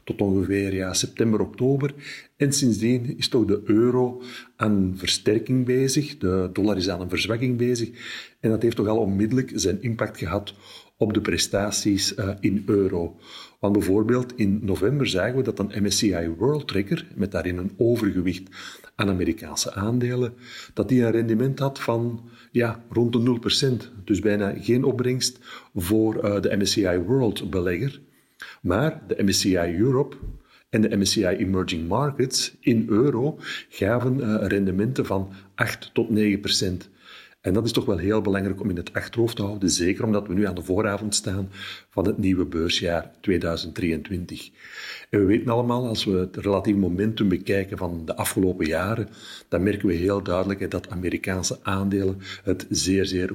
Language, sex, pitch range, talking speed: Dutch, male, 95-120 Hz, 155 wpm